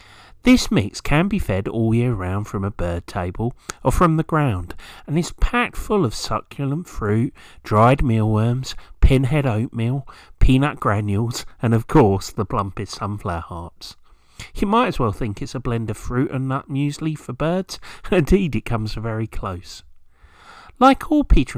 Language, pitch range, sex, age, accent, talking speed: English, 100-150 Hz, male, 40-59, British, 165 wpm